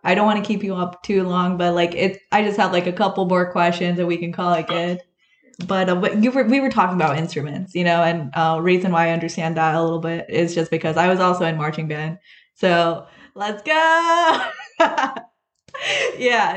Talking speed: 220 wpm